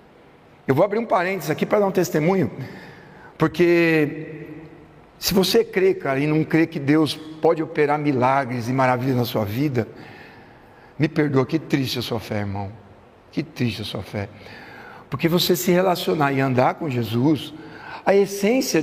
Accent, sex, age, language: Brazilian, male, 60-79, Portuguese